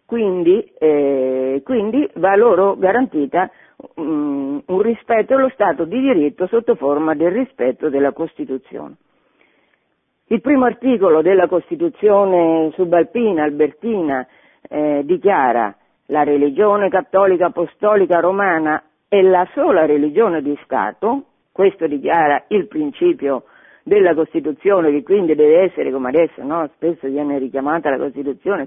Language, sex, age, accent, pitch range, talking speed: Italian, female, 50-69, native, 150-200 Hz, 120 wpm